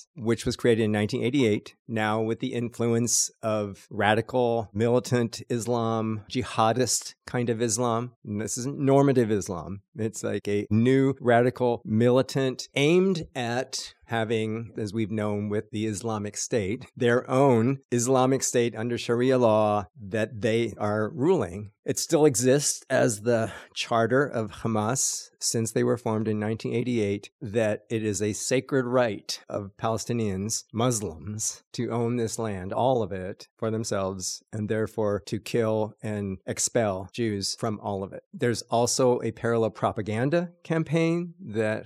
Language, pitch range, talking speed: English, 110-125 Hz, 140 wpm